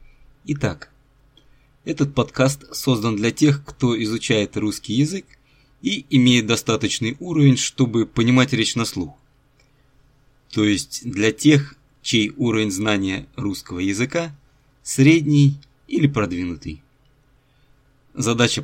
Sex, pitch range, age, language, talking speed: male, 105-140 Hz, 20-39, Russian, 105 wpm